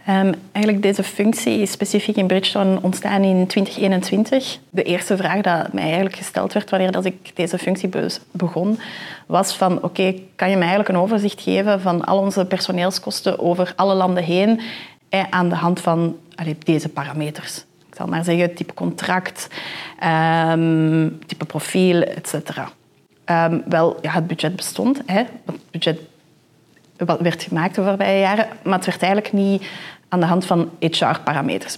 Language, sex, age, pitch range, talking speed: Dutch, female, 30-49, 165-195 Hz, 170 wpm